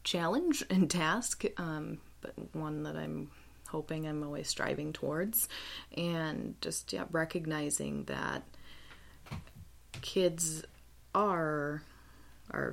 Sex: female